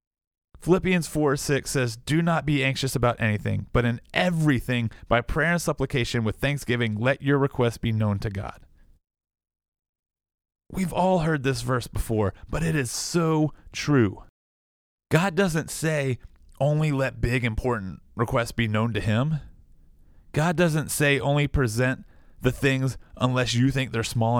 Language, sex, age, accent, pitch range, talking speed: English, male, 30-49, American, 110-145 Hz, 150 wpm